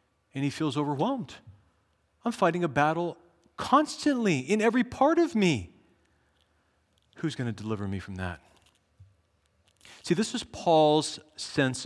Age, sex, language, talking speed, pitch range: 40-59, male, English, 130 wpm, 100-130 Hz